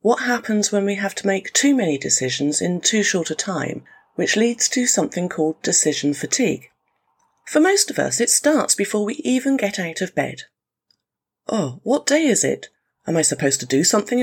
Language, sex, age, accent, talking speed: English, female, 40-59, British, 195 wpm